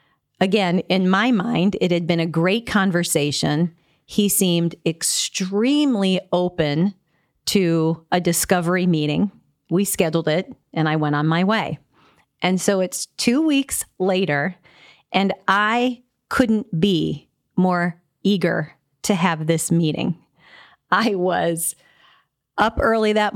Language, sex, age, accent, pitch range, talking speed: English, female, 40-59, American, 170-210 Hz, 125 wpm